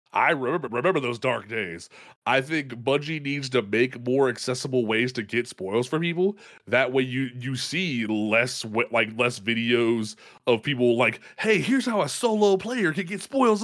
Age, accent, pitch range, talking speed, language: 20-39, American, 120-145 Hz, 180 wpm, English